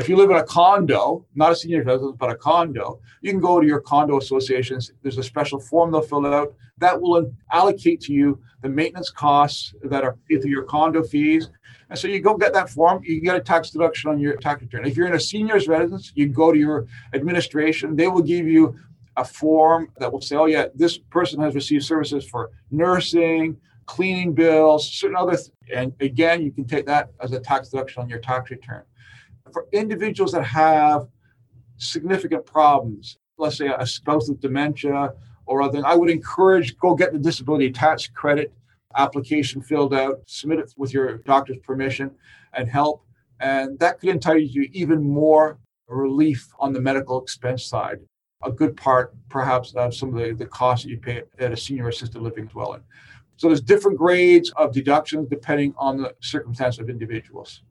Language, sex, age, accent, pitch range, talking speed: English, male, 50-69, American, 130-160 Hz, 190 wpm